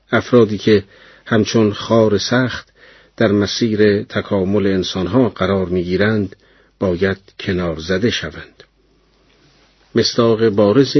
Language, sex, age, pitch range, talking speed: Persian, male, 50-69, 95-120 Hz, 100 wpm